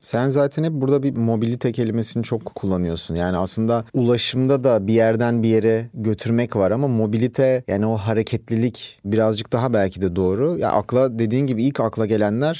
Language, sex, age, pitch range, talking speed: Turkish, male, 30-49, 105-130 Hz, 175 wpm